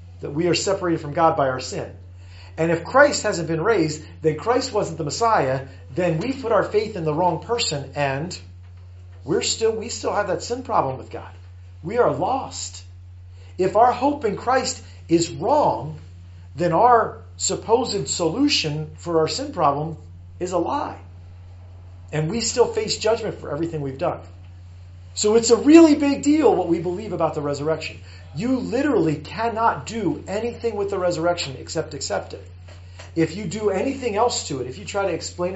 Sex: male